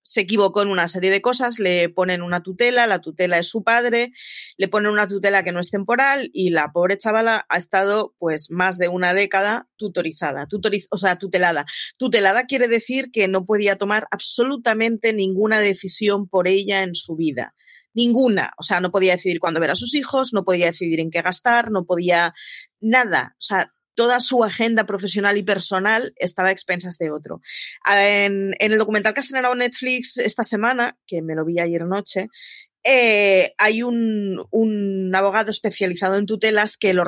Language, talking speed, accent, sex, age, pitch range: Spanish, 185 wpm, Spanish, female, 30-49, 180-220 Hz